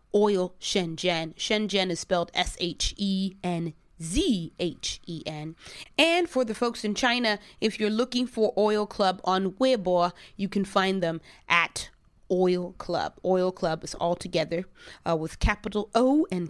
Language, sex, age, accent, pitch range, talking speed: English, female, 30-49, American, 170-225 Hz, 135 wpm